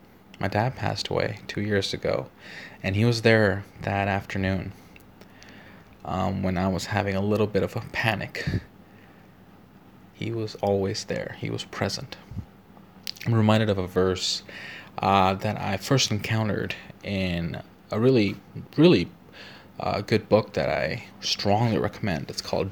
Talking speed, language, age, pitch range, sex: 145 wpm, English, 20-39, 95-110 Hz, male